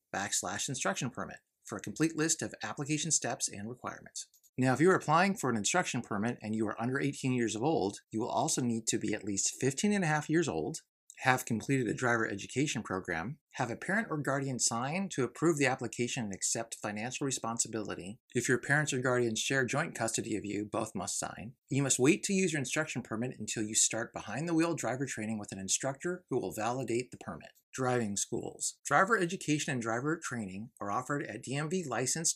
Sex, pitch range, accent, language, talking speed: male, 110-150 Hz, American, English, 205 wpm